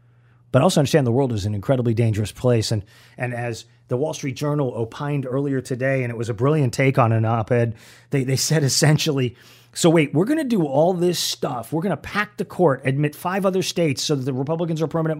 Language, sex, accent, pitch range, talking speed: English, male, American, 120-170 Hz, 230 wpm